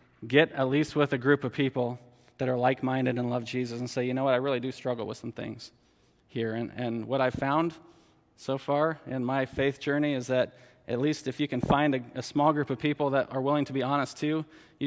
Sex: male